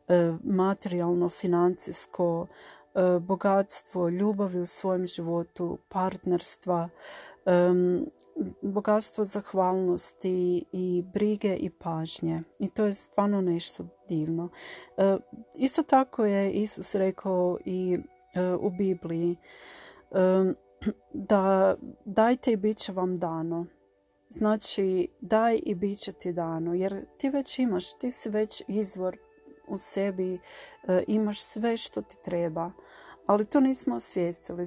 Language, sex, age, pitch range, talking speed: Croatian, female, 40-59, 175-215 Hz, 105 wpm